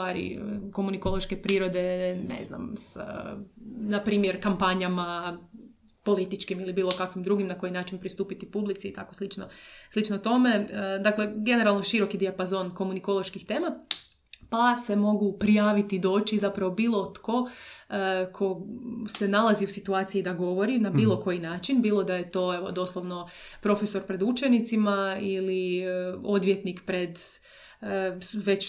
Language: Croatian